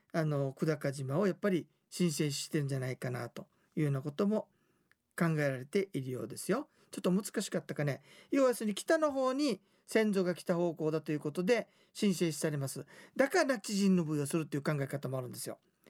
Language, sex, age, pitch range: Japanese, male, 40-59, 160-230 Hz